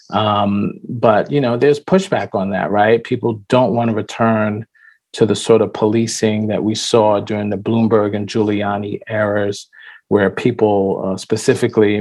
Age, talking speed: 40-59, 160 wpm